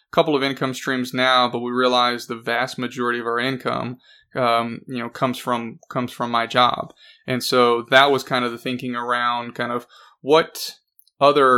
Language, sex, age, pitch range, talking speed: English, male, 20-39, 120-130 Hz, 185 wpm